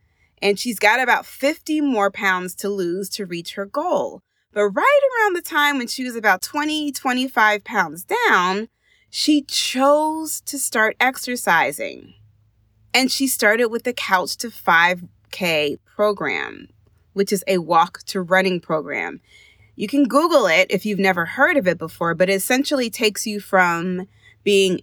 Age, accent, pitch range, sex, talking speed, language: 30-49, American, 185-280 Hz, female, 155 wpm, English